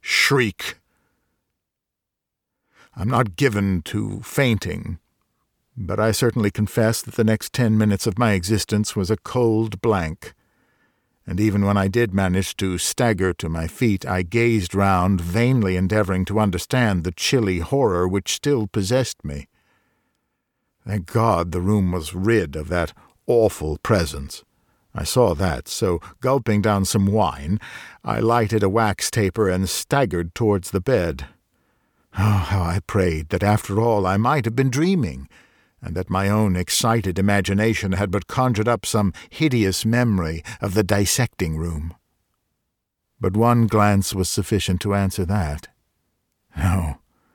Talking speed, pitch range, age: 140 wpm, 90-110 Hz, 60-79